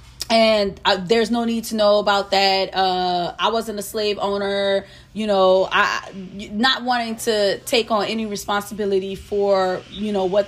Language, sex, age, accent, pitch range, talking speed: English, female, 30-49, American, 185-215 Hz, 165 wpm